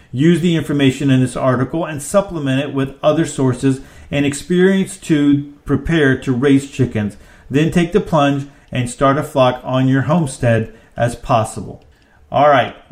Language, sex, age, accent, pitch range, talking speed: English, male, 40-59, American, 120-150 Hz, 160 wpm